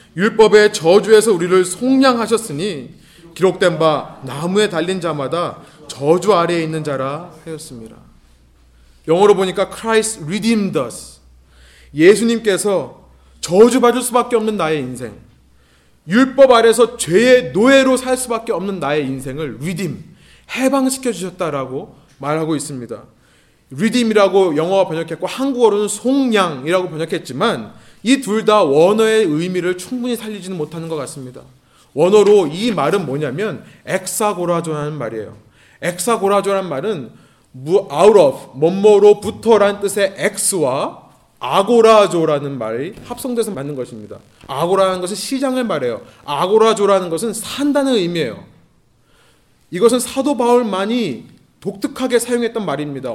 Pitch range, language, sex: 155-225 Hz, Korean, male